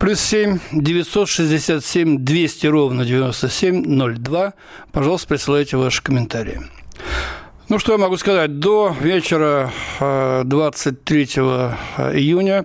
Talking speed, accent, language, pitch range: 110 wpm, native, Russian, 135-165 Hz